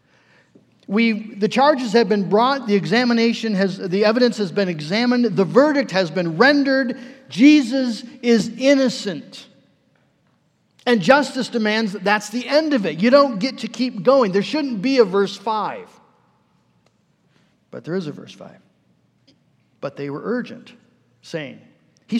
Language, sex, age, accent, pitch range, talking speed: English, male, 50-69, American, 200-255 Hz, 150 wpm